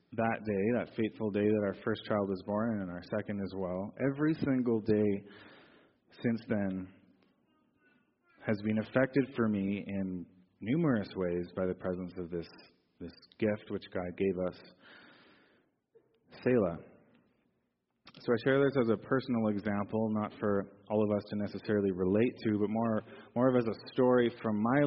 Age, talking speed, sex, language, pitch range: 30-49, 160 wpm, male, English, 95-115 Hz